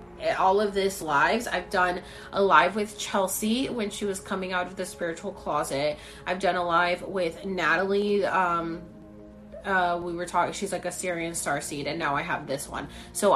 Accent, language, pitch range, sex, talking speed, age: American, English, 165-210 Hz, female, 190 wpm, 30-49